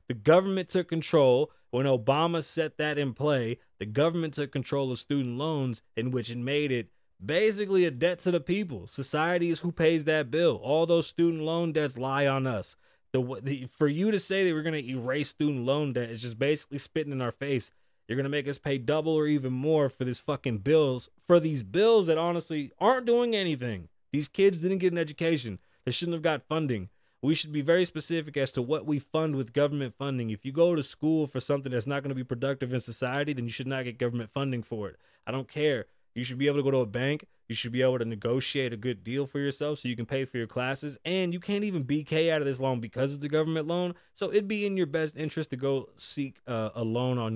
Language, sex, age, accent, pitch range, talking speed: English, male, 20-39, American, 130-160 Hz, 240 wpm